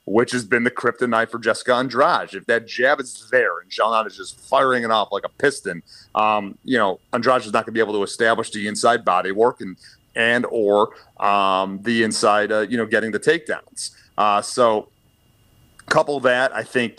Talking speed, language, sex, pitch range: 205 wpm, English, male, 105-120 Hz